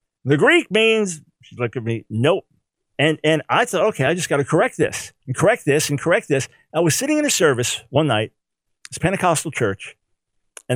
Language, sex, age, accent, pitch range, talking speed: English, male, 50-69, American, 125-165 Hz, 205 wpm